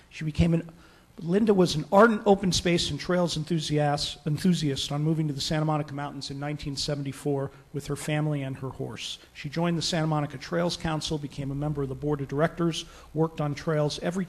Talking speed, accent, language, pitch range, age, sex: 195 wpm, American, English, 140-170 Hz, 40-59, male